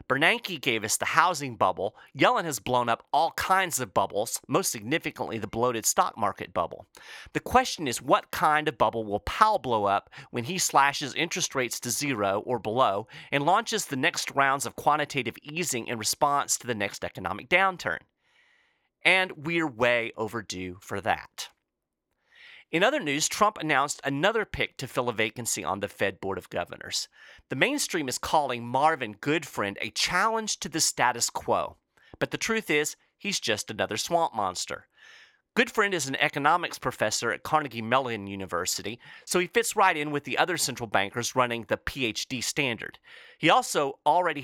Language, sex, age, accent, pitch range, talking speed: English, male, 30-49, American, 115-180 Hz, 170 wpm